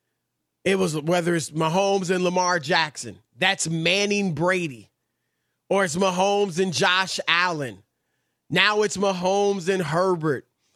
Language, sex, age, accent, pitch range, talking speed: English, male, 30-49, American, 180-220 Hz, 125 wpm